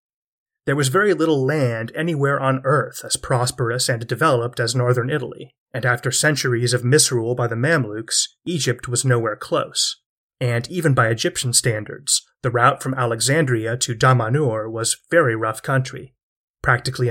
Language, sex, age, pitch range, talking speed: English, male, 30-49, 120-140 Hz, 150 wpm